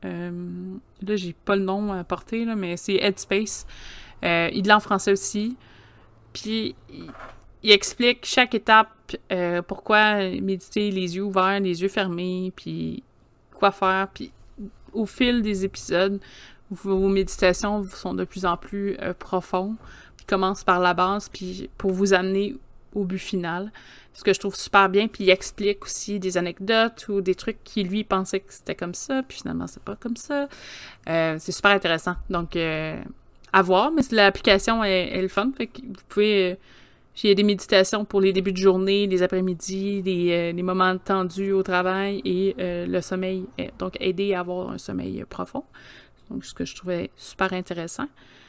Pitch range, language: 185-215 Hz, French